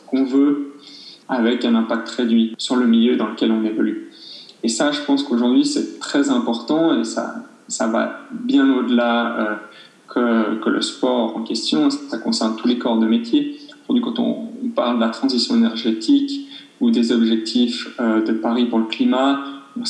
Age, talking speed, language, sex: 20-39, 170 wpm, French, male